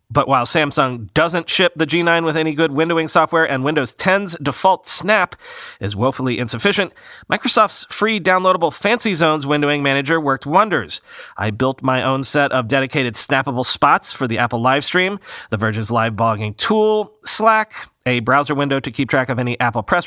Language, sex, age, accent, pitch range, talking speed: English, male, 40-59, American, 130-180 Hz, 175 wpm